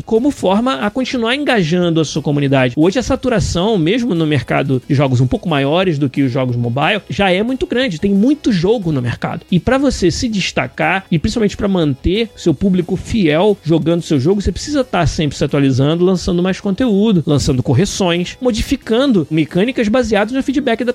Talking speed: 185 wpm